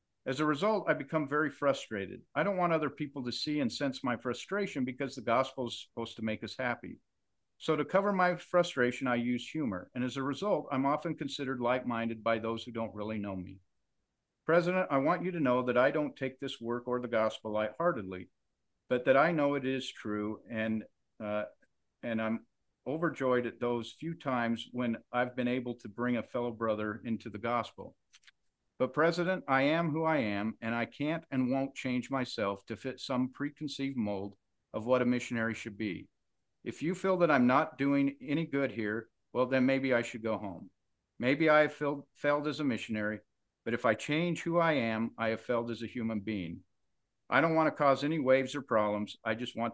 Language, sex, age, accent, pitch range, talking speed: English, male, 50-69, American, 110-140 Hz, 205 wpm